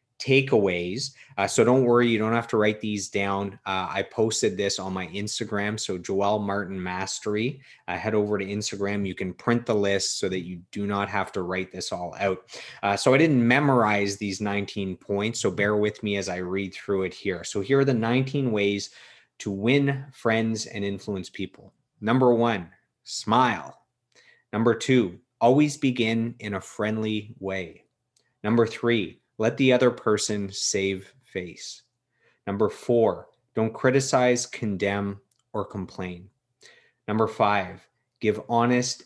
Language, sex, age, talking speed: English, male, 30-49, 160 wpm